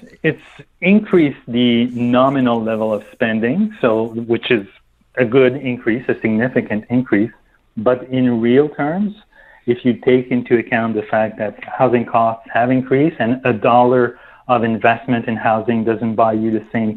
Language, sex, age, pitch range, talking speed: English, male, 40-59, 115-130 Hz, 155 wpm